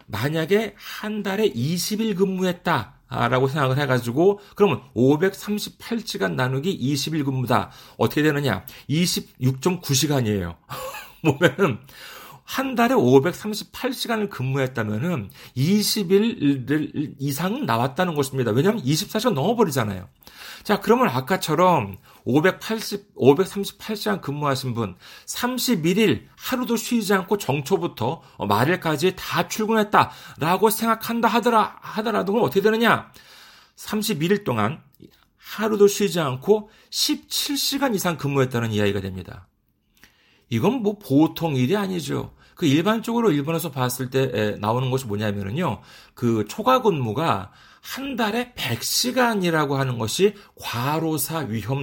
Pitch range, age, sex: 125-210 Hz, 40-59, male